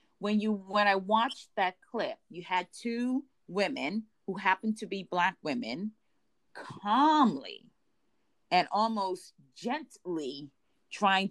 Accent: American